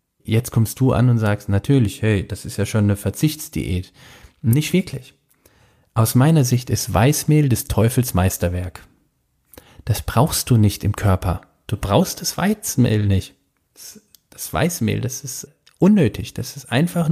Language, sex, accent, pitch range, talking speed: German, male, German, 105-140 Hz, 155 wpm